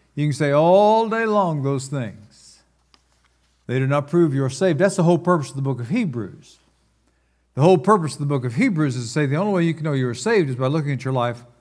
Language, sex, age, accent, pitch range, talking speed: English, male, 60-79, American, 130-185 Hz, 260 wpm